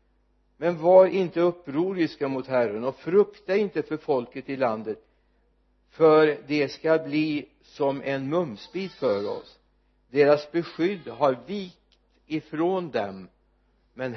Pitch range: 115-170 Hz